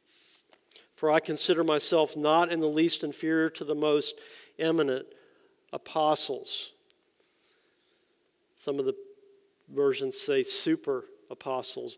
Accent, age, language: American, 50-69, English